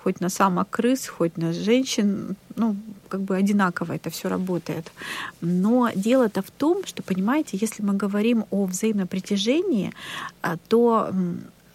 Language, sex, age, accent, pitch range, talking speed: Russian, female, 40-59, native, 190-230 Hz, 130 wpm